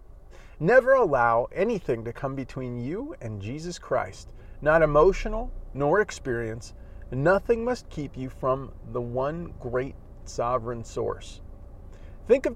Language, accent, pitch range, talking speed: English, American, 115-190 Hz, 125 wpm